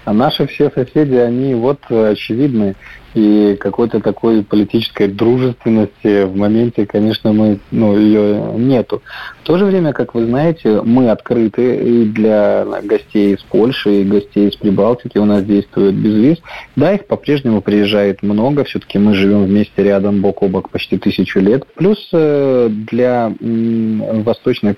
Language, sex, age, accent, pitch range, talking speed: Russian, male, 20-39, native, 100-125 Hz, 145 wpm